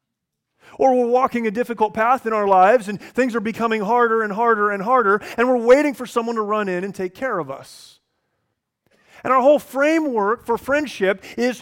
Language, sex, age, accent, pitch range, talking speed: English, male, 30-49, American, 170-235 Hz, 195 wpm